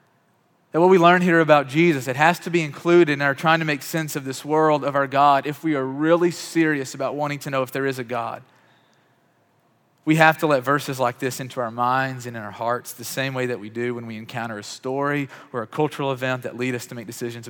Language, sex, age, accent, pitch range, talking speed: English, male, 30-49, American, 115-145 Hz, 250 wpm